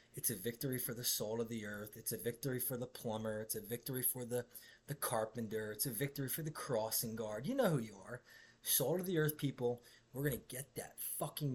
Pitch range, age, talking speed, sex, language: 115-150 Hz, 20-39, 230 wpm, male, English